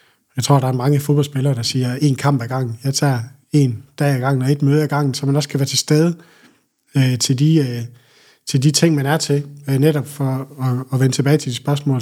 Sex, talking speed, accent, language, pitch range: male, 255 wpm, native, Danish, 130-150 Hz